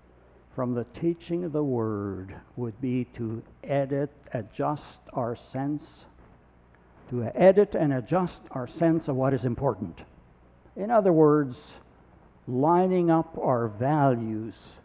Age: 60-79